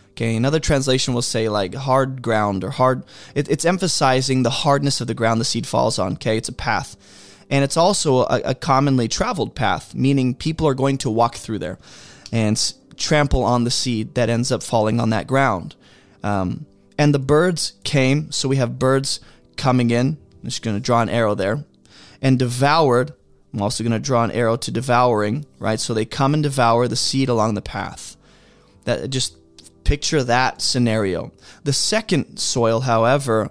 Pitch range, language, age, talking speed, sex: 110-140 Hz, English, 20-39, 185 wpm, male